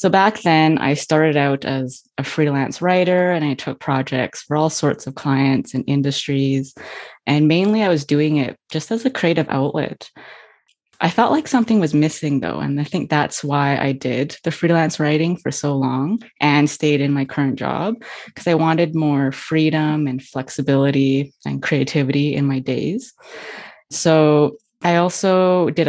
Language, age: English, 20-39